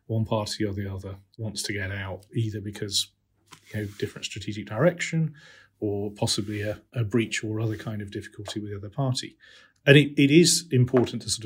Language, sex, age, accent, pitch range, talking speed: English, male, 40-59, British, 100-115 Hz, 195 wpm